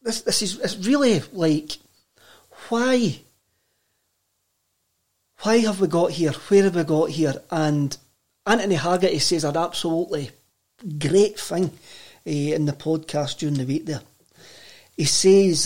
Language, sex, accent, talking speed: English, male, British, 140 wpm